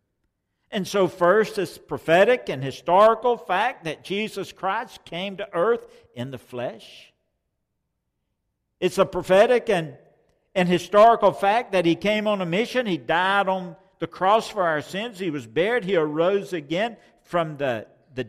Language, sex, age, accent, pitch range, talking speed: English, male, 60-79, American, 155-205 Hz, 155 wpm